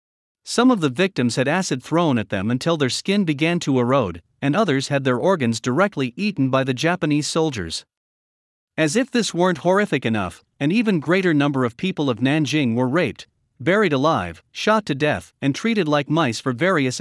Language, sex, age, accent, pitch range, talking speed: English, male, 50-69, American, 125-175 Hz, 185 wpm